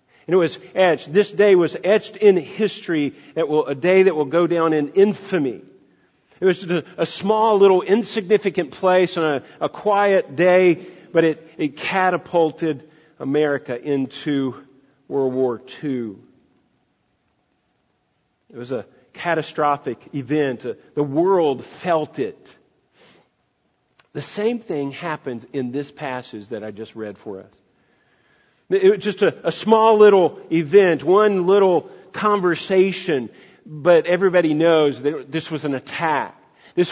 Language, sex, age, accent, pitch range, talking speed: English, male, 50-69, American, 150-195 Hz, 140 wpm